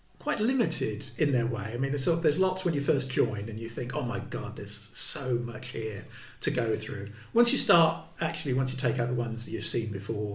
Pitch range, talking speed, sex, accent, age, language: 110-130 Hz, 240 wpm, male, British, 50-69, English